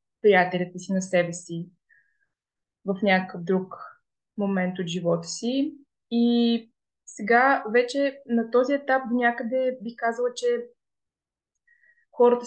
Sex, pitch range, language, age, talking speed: female, 195-235 Hz, Bulgarian, 20-39, 110 wpm